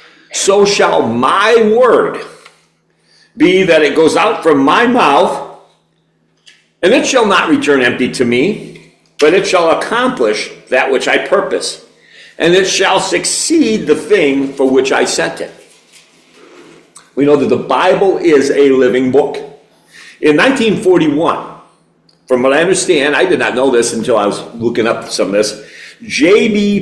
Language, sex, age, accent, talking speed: English, male, 50-69, American, 150 wpm